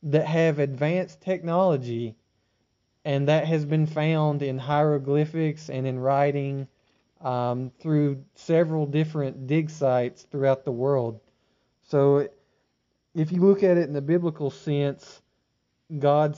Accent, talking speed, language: American, 125 wpm, English